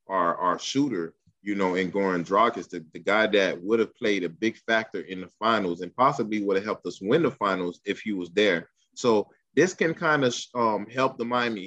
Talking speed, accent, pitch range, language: 220 wpm, American, 95-125 Hz, English